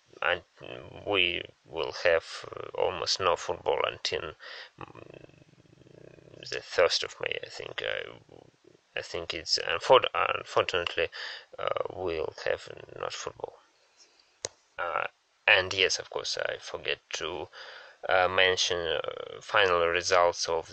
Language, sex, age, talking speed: English, male, 20-39, 110 wpm